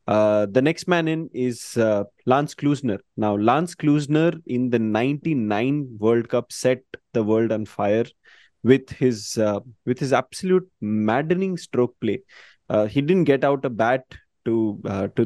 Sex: male